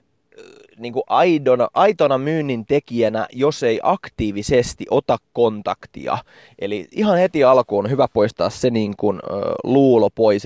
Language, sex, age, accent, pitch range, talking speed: English, male, 20-39, Finnish, 105-145 Hz, 105 wpm